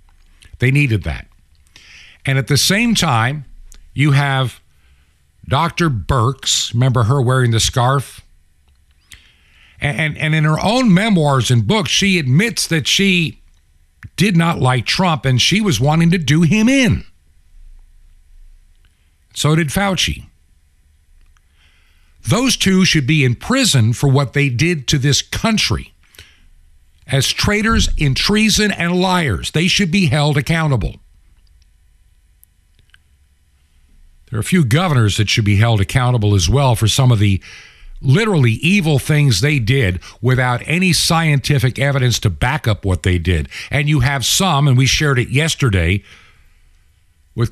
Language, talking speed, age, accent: English, 140 wpm, 60-79, American